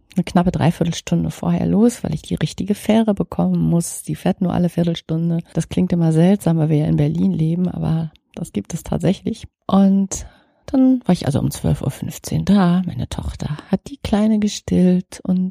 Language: German